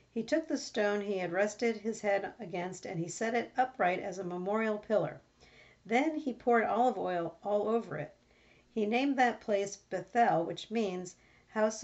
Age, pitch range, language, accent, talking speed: 50-69, 180-240 Hz, English, American, 175 wpm